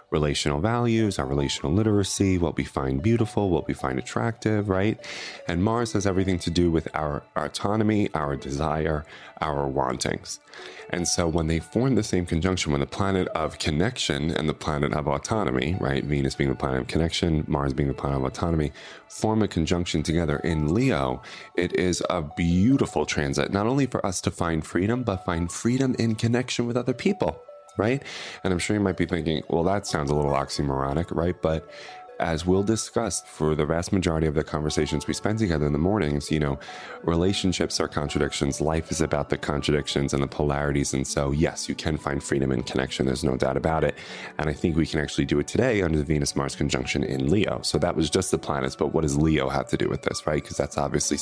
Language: English